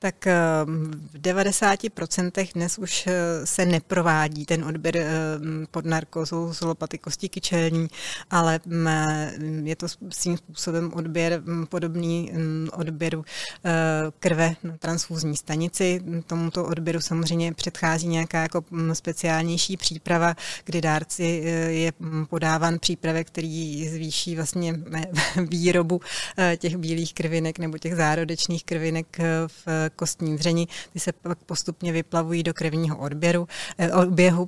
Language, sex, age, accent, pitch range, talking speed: Czech, female, 30-49, native, 155-170 Hz, 105 wpm